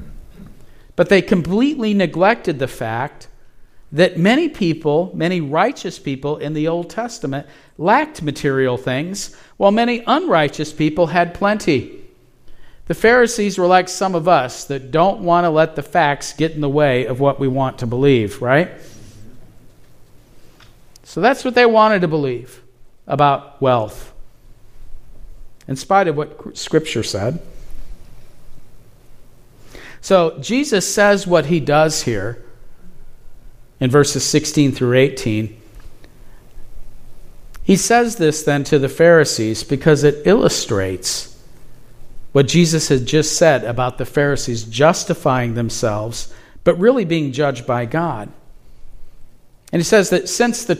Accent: American